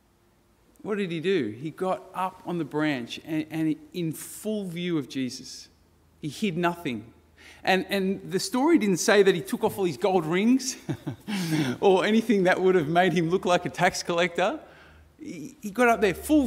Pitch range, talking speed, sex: 120-190 Hz, 190 wpm, male